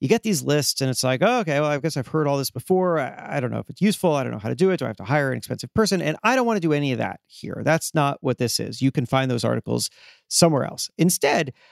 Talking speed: 305 wpm